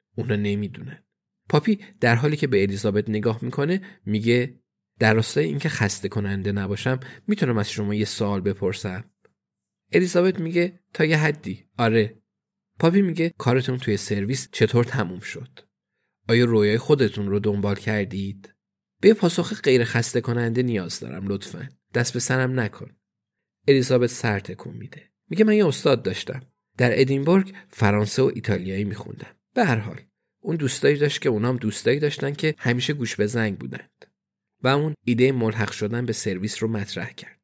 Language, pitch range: Persian, 105-130 Hz